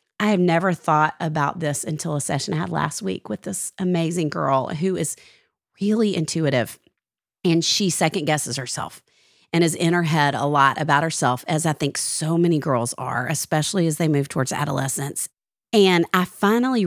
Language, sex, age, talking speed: English, female, 40-59, 180 wpm